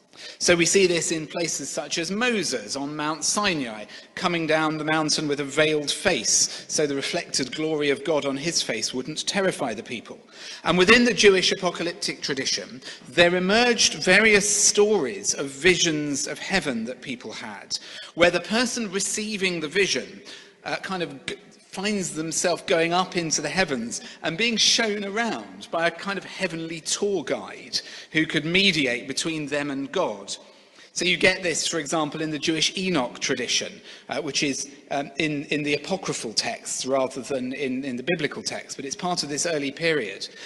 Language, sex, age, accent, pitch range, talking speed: English, male, 40-59, British, 150-205 Hz, 175 wpm